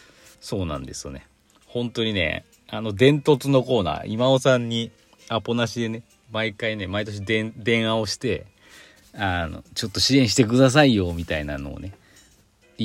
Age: 40-59